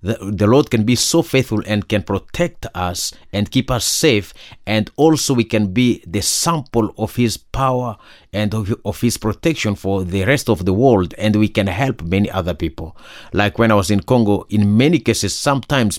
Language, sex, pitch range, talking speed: English, male, 90-115 Hz, 190 wpm